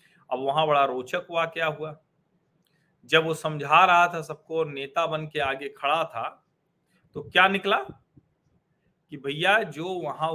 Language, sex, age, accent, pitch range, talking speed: Hindi, male, 40-59, native, 145-180 Hz, 150 wpm